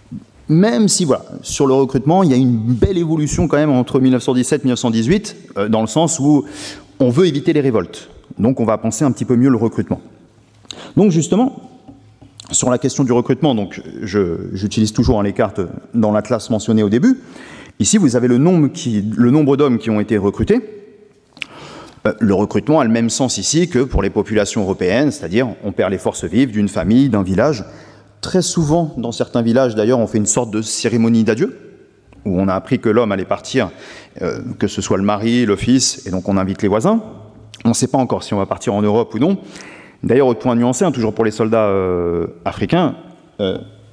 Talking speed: 205 wpm